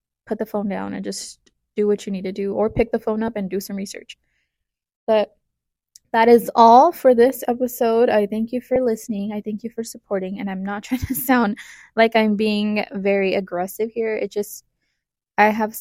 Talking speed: 200 wpm